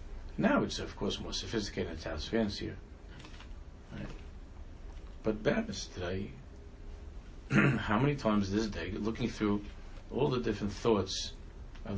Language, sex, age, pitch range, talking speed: English, male, 60-79, 80-100 Hz, 135 wpm